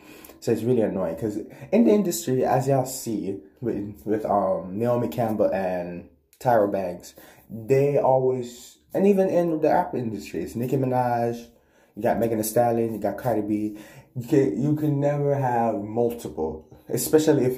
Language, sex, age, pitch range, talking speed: English, male, 20-39, 105-135 Hz, 165 wpm